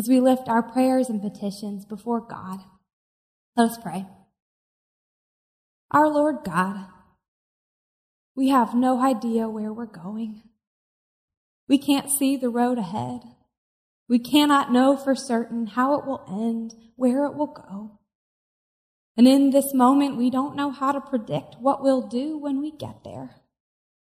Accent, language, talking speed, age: American, English, 145 wpm, 20-39